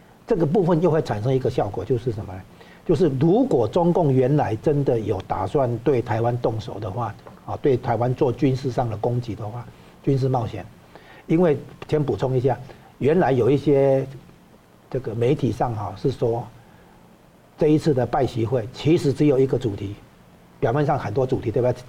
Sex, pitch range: male, 115-150 Hz